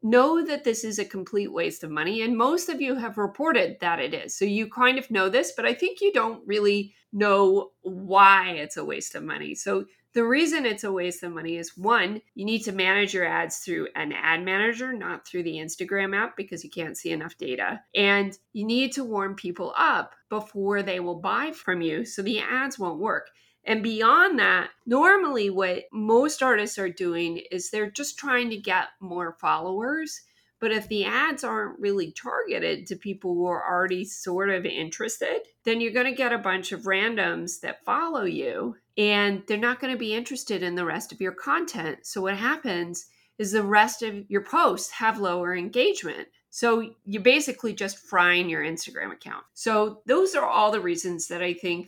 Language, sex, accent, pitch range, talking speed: English, female, American, 185-250 Hz, 200 wpm